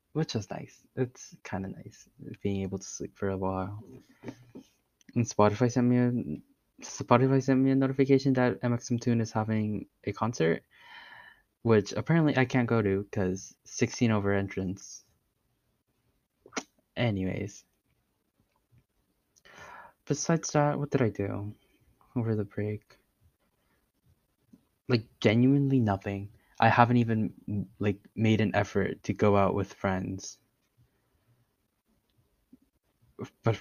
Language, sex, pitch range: English, male, 100-120 Hz